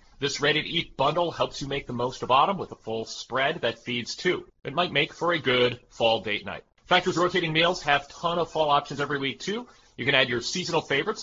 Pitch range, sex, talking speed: 120-175 Hz, male, 235 wpm